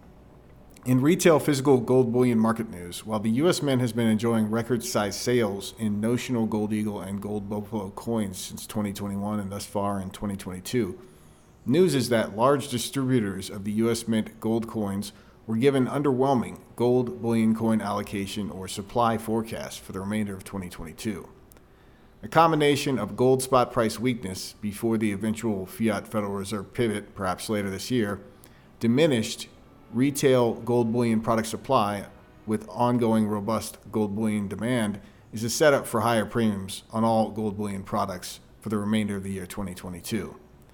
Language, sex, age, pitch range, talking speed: English, male, 40-59, 100-120 Hz, 155 wpm